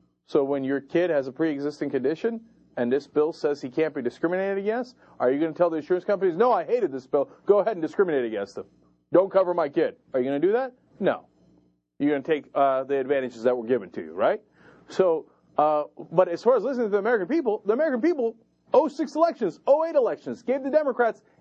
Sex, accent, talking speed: male, American, 230 wpm